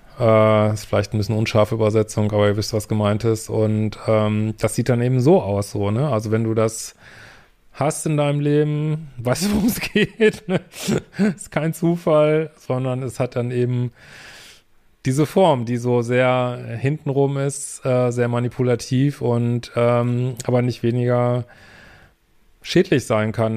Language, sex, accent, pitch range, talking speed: German, male, German, 110-135 Hz, 160 wpm